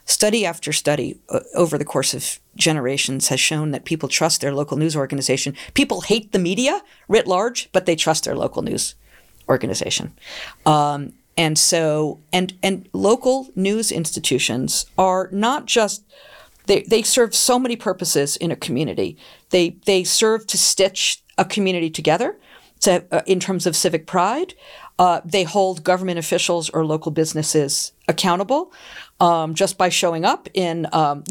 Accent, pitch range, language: American, 160-220 Hz, English